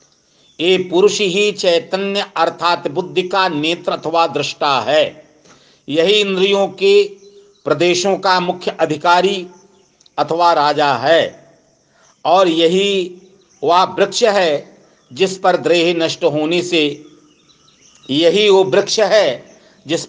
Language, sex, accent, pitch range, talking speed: Hindi, male, native, 160-195 Hz, 115 wpm